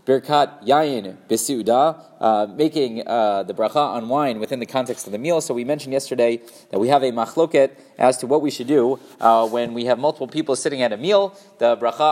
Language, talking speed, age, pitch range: English, 200 wpm, 20-39, 120-155 Hz